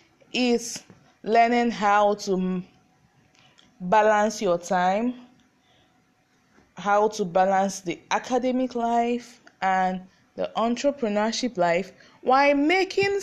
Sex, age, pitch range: female, 20-39, 195-255 Hz